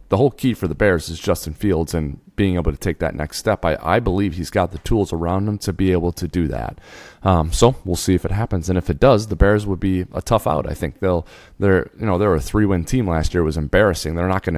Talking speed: 280 wpm